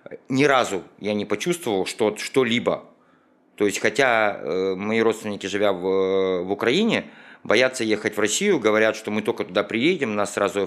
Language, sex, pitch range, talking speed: Russian, male, 95-115 Hz, 170 wpm